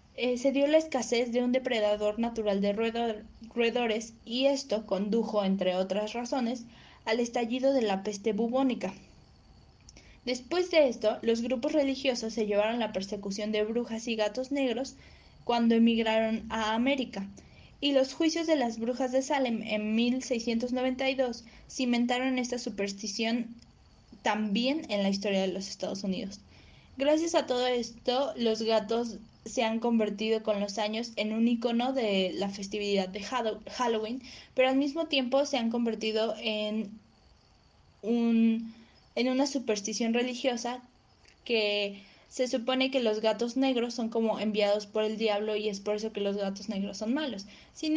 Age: 10-29